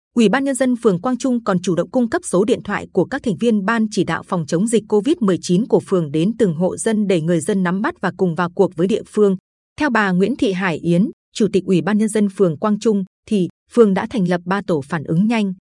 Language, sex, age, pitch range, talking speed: Vietnamese, female, 20-39, 180-225 Hz, 265 wpm